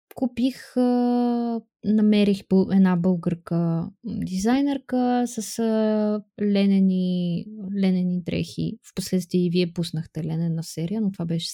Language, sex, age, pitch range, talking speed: Bulgarian, female, 20-39, 190-240 Hz, 95 wpm